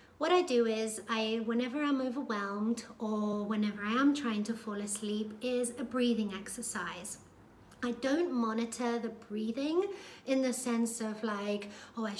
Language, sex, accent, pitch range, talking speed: English, female, British, 215-260 Hz, 155 wpm